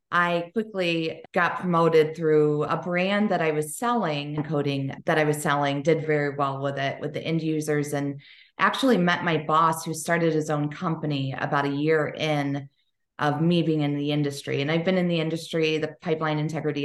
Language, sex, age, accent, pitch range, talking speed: English, female, 30-49, American, 150-180 Hz, 190 wpm